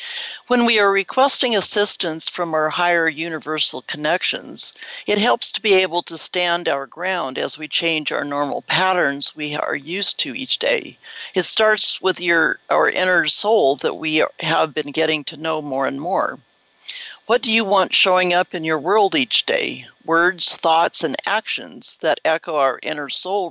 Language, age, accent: English, 60-79, American